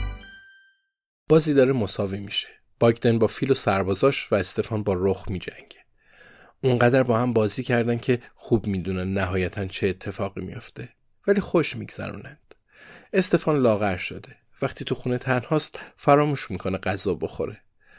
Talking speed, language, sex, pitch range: 135 wpm, Persian, male, 95-125 Hz